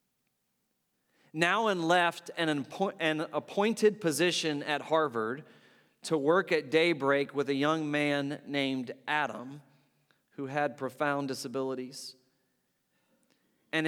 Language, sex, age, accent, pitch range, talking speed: English, male, 40-59, American, 135-165 Hz, 95 wpm